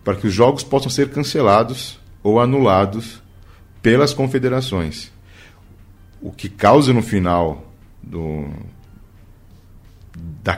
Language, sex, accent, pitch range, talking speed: Portuguese, male, Brazilian, 95-120 Hz, 95 wpm